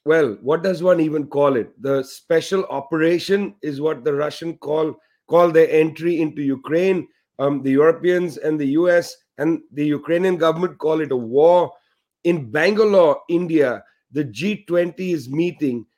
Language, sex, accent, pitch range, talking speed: English, male, Indian, 150-175 Hz, 155 wpm